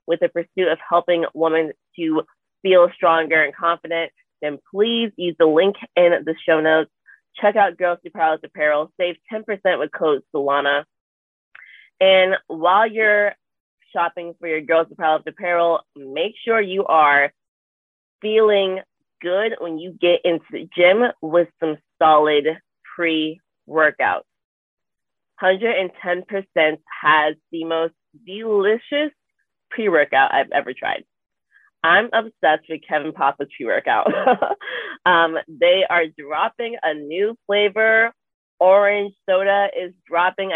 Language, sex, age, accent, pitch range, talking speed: English, female, 20-39, American, 155-195 Hz, 125 wpm